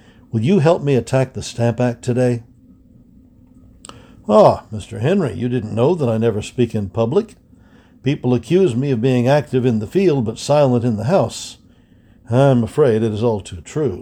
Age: 60-79